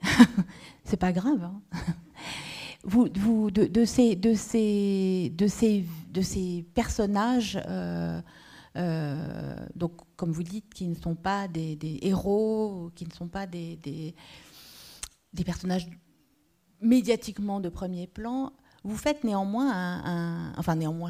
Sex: female